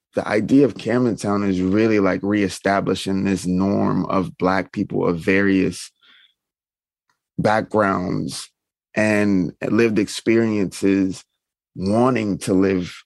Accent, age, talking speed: American, 20-39, 100 wpm